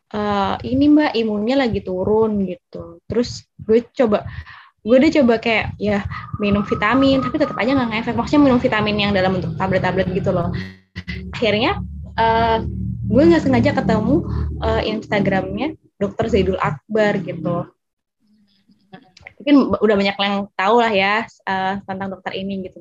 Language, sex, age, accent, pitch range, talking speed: Indonesian, female, 10-29, native, 195-245 Hz, 145 wpm